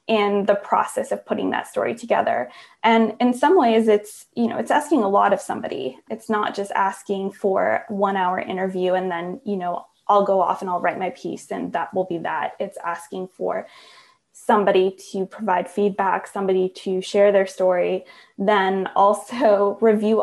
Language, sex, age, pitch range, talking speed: English, female, 20-39, 190-225 Hz, 180 wpm